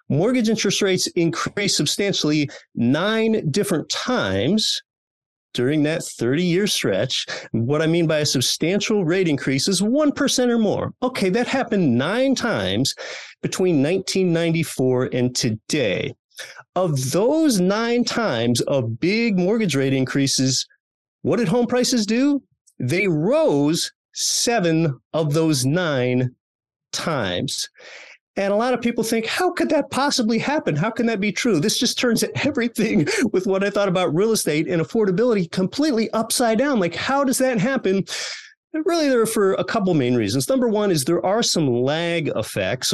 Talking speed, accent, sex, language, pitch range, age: 150 wpm, American, male, English, 135-225 Hz, 30-49